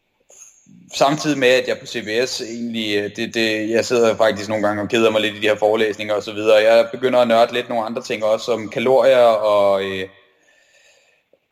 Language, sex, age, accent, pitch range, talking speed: Danish, male, 30-49, native, 105-130 Hz, 205 wpm